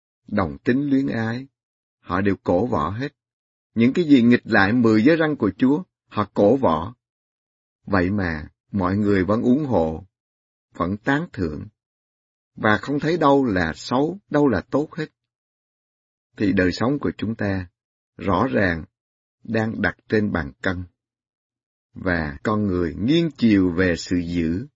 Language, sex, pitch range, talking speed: Vietnamese, male, 90-130 Hz, 155 wpm